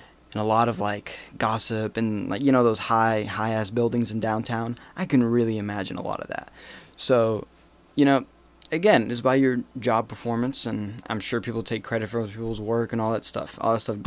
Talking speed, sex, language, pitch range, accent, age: 215 wpm, male, English, 105-120 Hz, American, 10-29